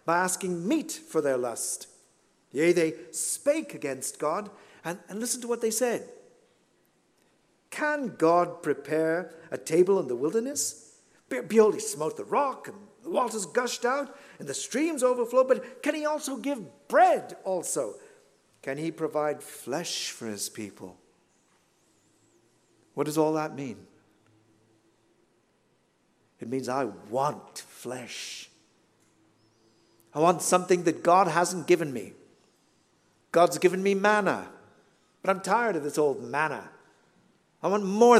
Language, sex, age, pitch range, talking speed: English, male, 60-79, 135-225 Hz, 135 wpm